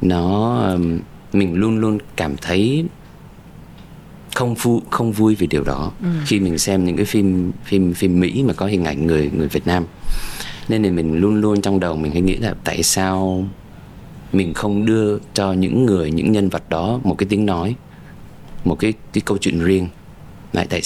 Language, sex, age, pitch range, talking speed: Vietnamese, male, 20-39, 85-110 Hz, 185 wpm